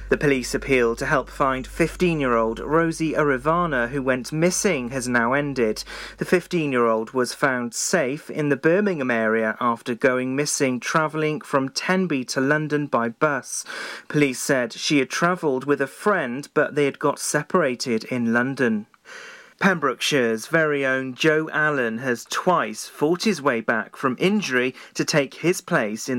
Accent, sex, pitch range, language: British, male, 125-165 Hz, English